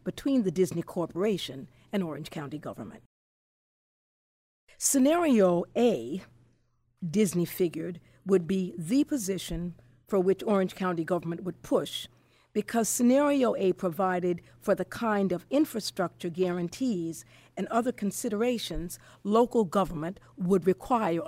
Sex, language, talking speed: female, English, 115 wpm